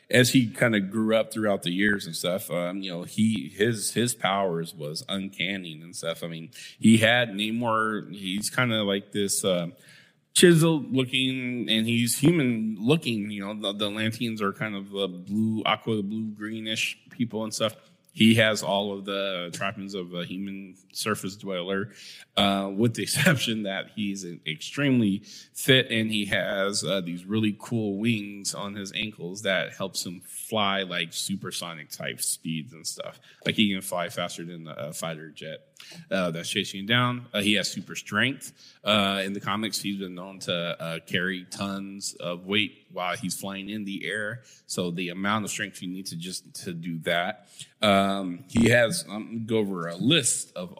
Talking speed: 180 wpm